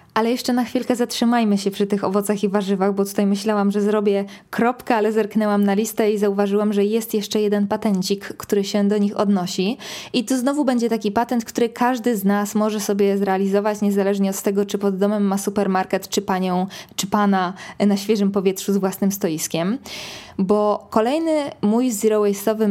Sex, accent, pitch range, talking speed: female, native, 195-225 Hz, 180 wpm